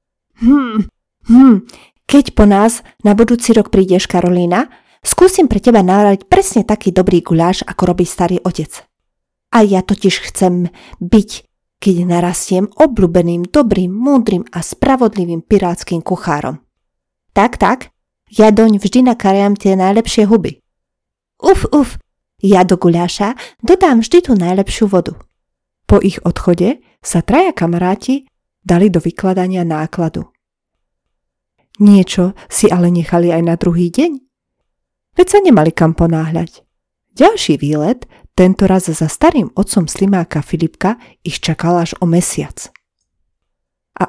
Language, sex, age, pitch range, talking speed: Slovak, female, 30-49, 175-230 Hz, 125 wpm